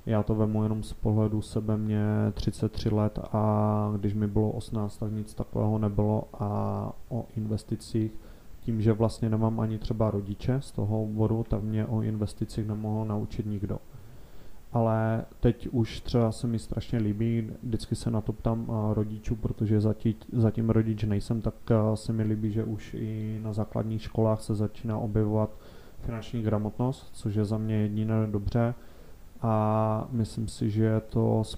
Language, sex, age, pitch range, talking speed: Czech, male, 20-39, 105-115 Hz, 165 wpm